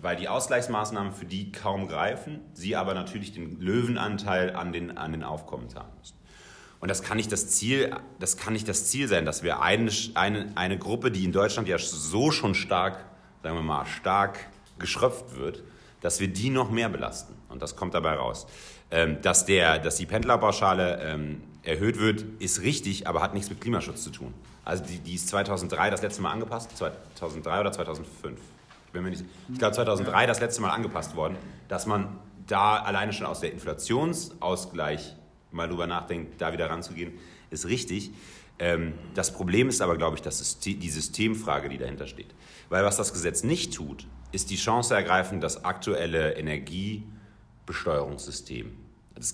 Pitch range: 85-105 Hz